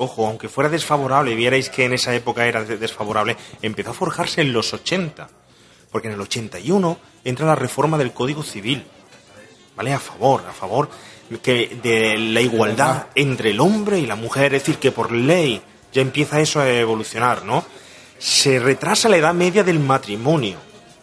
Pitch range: 115-165 Hz